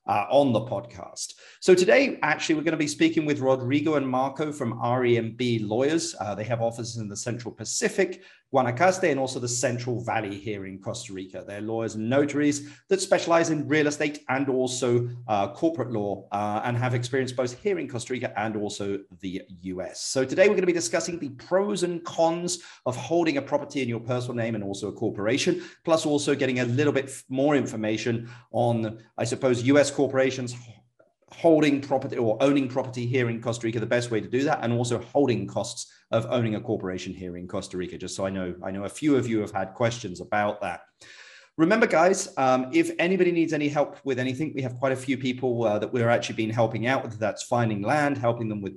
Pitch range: 110-145 Hz